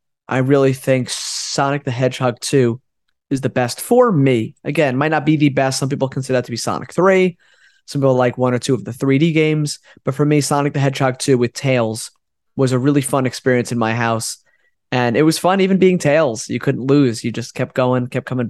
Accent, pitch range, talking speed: American, 120-150 Hz, 225 wpm